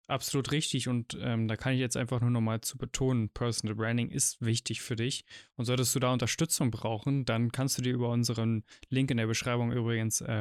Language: German